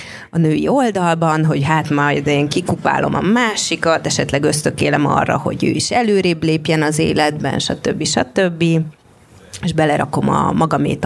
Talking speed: 145 wpm